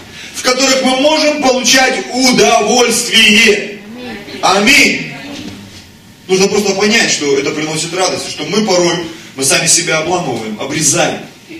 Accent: native